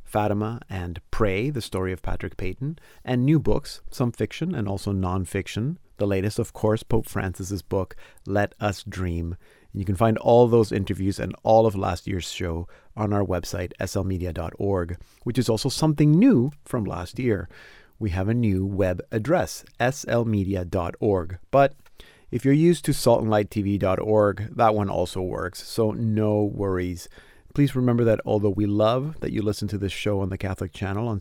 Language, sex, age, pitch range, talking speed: English, male, 30-49, 95-120 Hz, 165 wpm